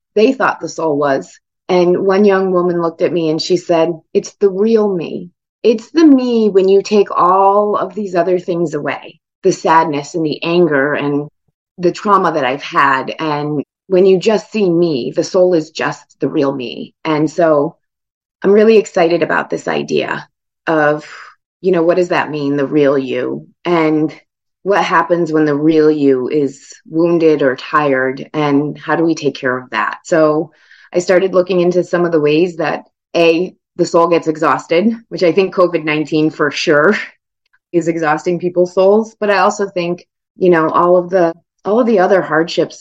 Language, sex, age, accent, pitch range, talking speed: English, female, 30-49, American, 150-185 Hz, 185 wpm